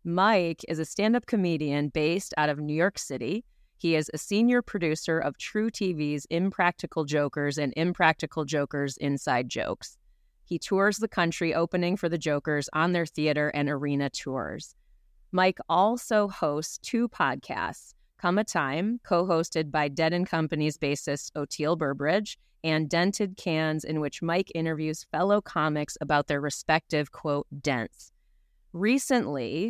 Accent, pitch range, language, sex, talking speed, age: American, 150-180 Hz, English, female, 145 wpm, 30-49